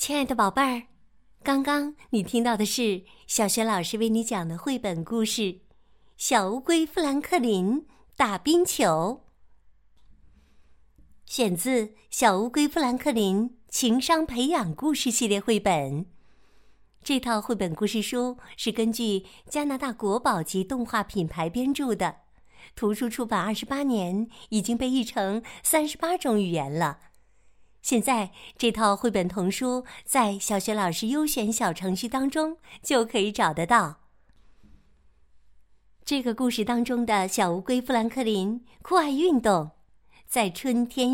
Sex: female